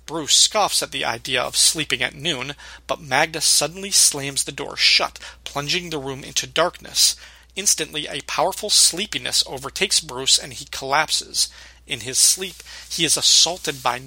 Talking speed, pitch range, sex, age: 160 wpm, 130-165 Hz, male, 40-59